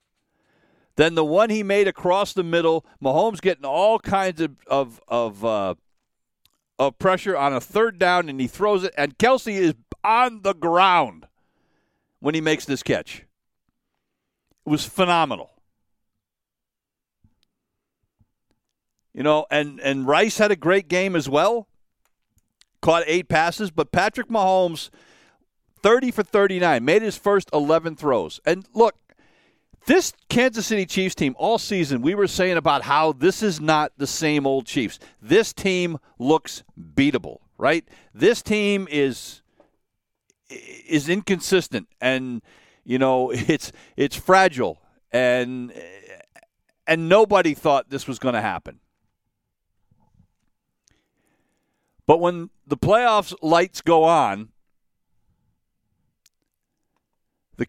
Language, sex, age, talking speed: English, male, 50-69, 125 wpm